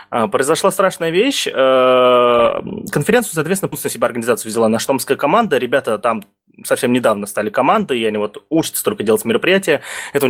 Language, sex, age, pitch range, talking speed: Russian, male, 20-39, 110-155 Hz, 155 wpm